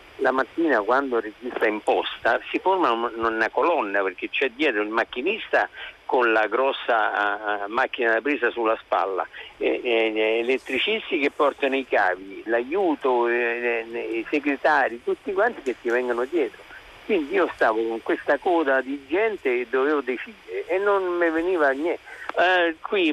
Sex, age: male, 50-69